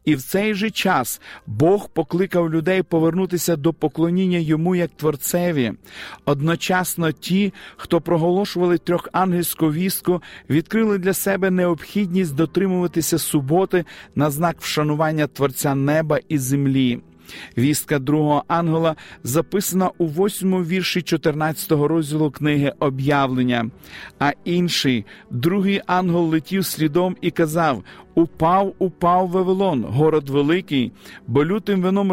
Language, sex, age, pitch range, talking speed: Ukrainian, male, 40-59, 150-185 Hz, 110 wpm